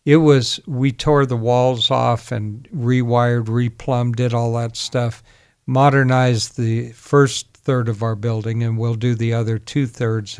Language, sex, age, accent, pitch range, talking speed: English, male, 60-79, American, 115-140 Hz, 155 wpm